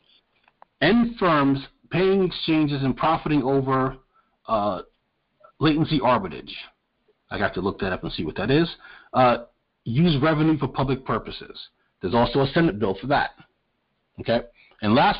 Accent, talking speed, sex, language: American, 145 wpm, male, English